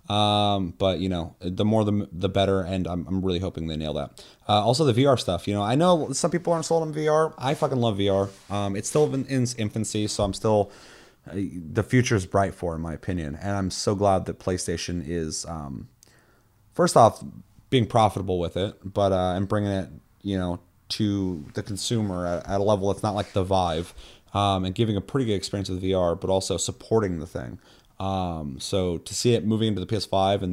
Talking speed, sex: 220 wpm, male